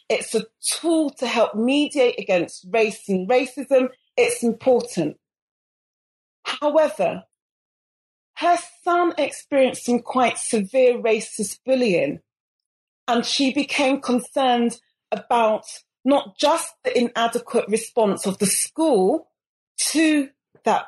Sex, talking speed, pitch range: female, 105 wpm, 215-270 Hz